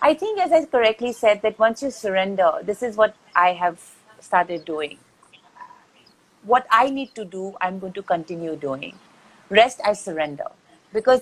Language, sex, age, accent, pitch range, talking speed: Hindi, female, 40-59, native, 180-225 Hz, 165 wpm